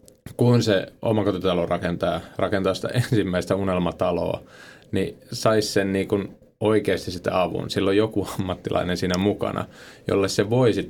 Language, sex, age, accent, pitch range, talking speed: Finnish, male, 20-39, native, 95-110 Hz, 120 wpm